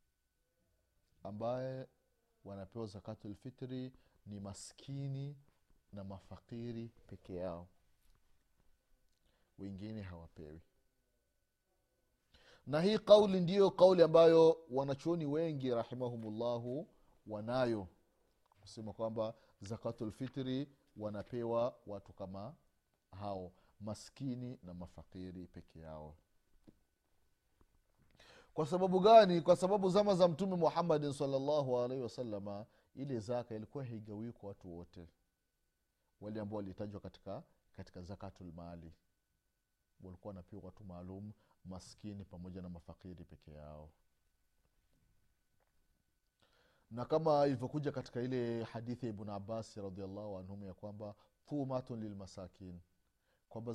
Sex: male